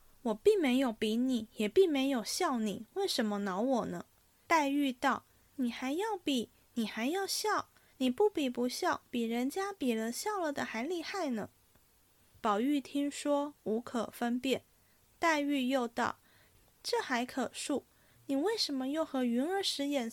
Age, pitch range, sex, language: 20-39, 250-345 Hz, female, Chinese